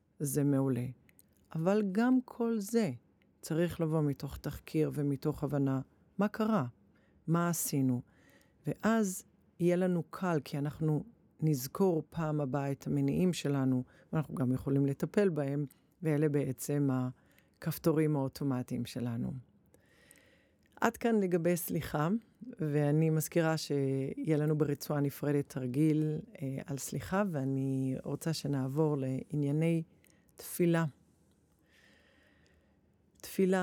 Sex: female